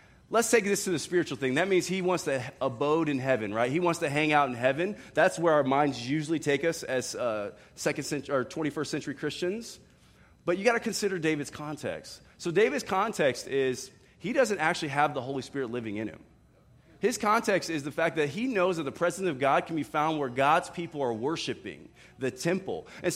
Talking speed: 215 wpm